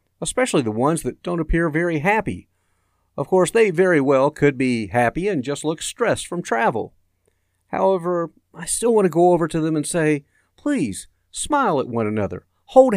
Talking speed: 180 wpm